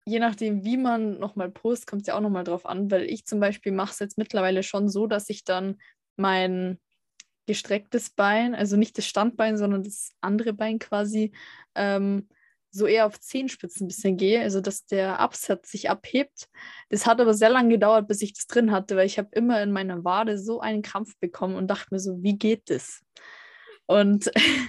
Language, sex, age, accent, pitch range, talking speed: German, female, 20-39, German, 200-230 Hz, 200 wpm